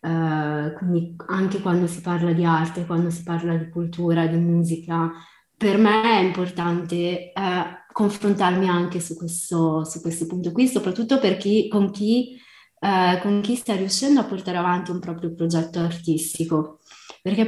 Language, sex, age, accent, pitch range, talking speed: Italian, female, 20-39, native, 170-205 Hz, 160 wpm